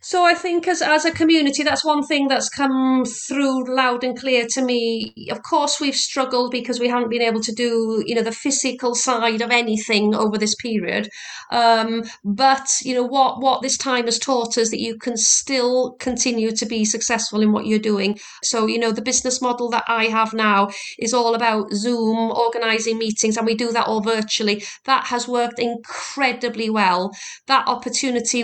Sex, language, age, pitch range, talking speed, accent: female, English, 40-59, 225-250 Hz, 190 wpm, British